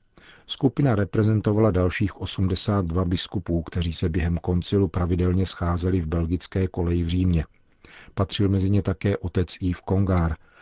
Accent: native